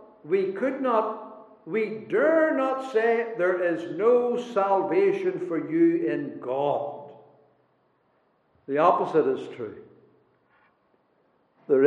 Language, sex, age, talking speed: English, male, 60-79, 100 wpm